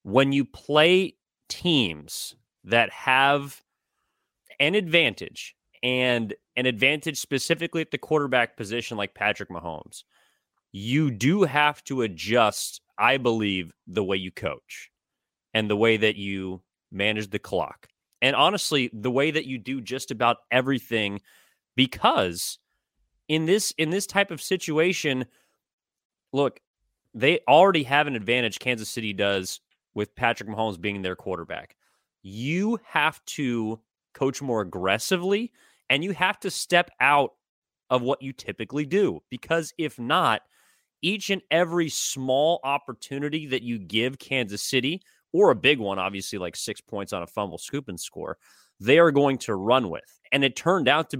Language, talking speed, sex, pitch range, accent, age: English, 150 wpm, male, 110-155 Hz, American, 30-49